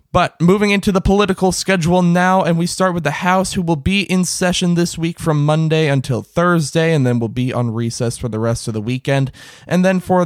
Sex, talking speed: male, 230 wpm